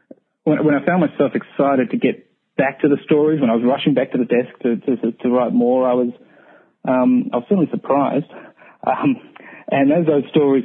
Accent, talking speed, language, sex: Australian, 205 wpm, English, male